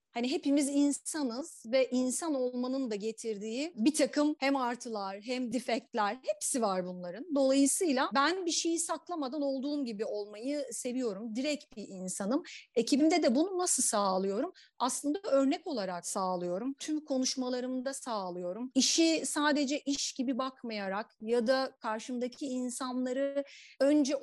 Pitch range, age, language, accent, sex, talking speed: 225-285 Hz, 40-59, Turkish, native, female, 125 wpm